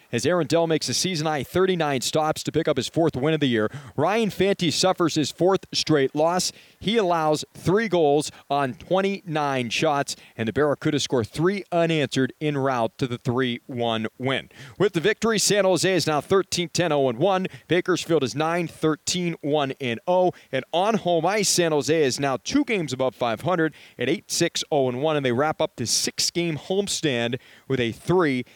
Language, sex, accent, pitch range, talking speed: English, male, American, 135-185 Hz, 165 wpm